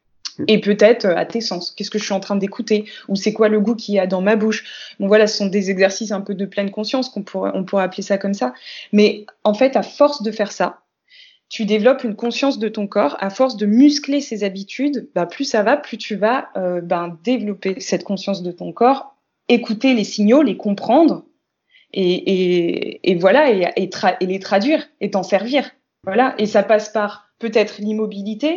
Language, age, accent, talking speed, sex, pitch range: French, 20-39, French, 215 wpm, female, 195-250 Hz